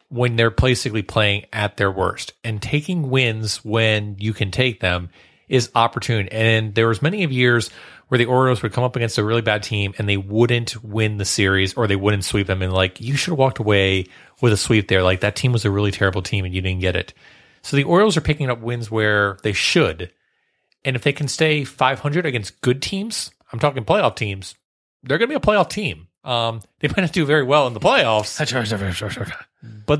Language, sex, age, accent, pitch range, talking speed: English, male, 30-49, American, 100-135 Hz, 220 wpm